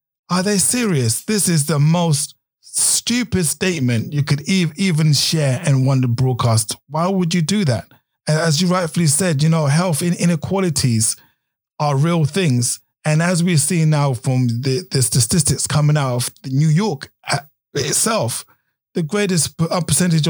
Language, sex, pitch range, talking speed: English, male, 130-165 Hz, 155 wpm